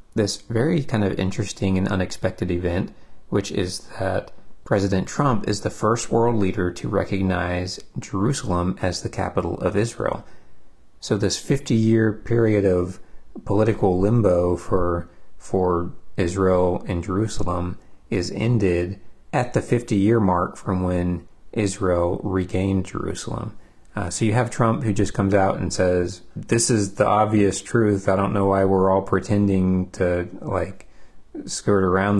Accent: American